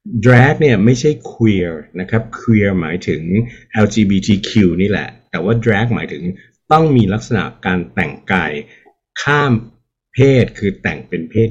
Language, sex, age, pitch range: Thai, male, 60-79, 95-120 Hz